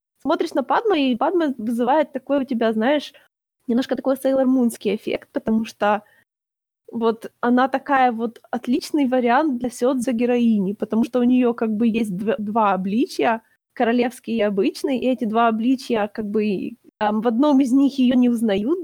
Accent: native